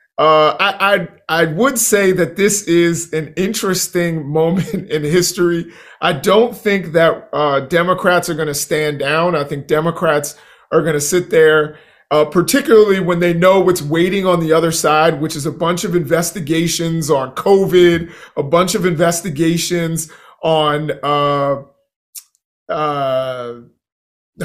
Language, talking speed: English, 140 wpm